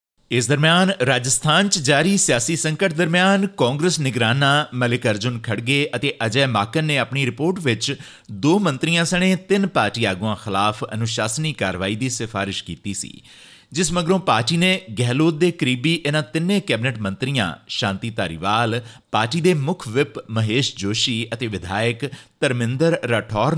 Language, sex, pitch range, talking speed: Punjabi, male, 110-160 Hz, 145 wpm